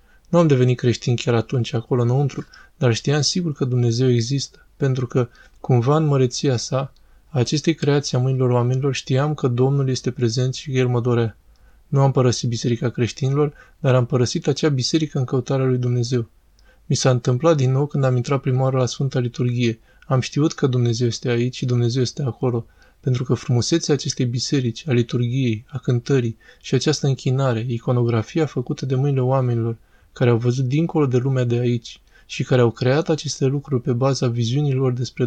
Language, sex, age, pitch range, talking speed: Romanian, male, 20-39, 120-140 Hz, 180 wpm